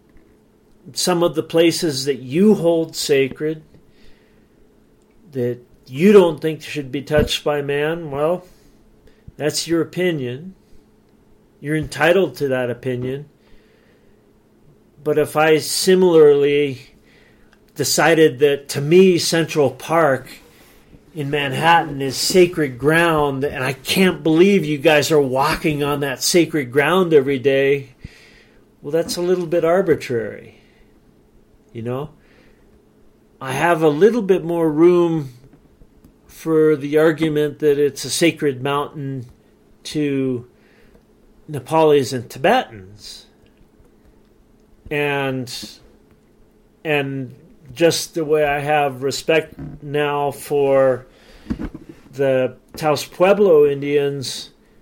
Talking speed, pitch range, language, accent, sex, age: 105 wpm, 135-160 Hz, English, American, male, 40-59